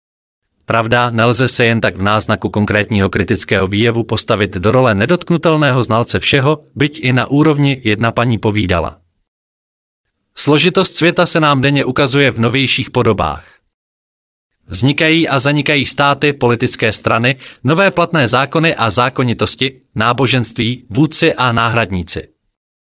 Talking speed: 125 wpm